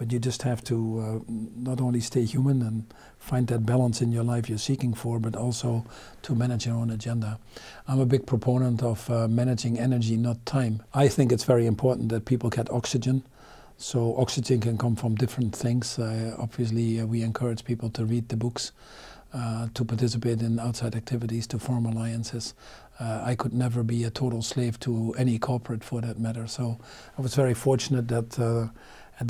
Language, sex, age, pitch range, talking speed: English, male, 50-69, 115-125 Hz, 195 wpm